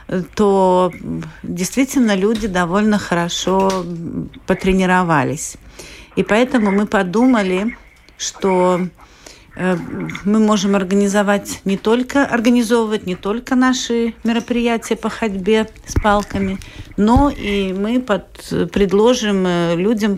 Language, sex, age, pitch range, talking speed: Russian, female, 50-69, 180-220 Hz, 90 wpm